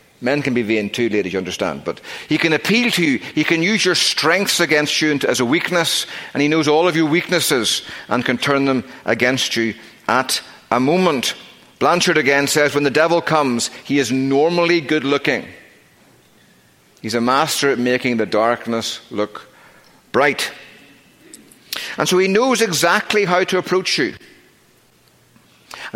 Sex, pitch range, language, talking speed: male, 130-175 Hz, English, 165 wpm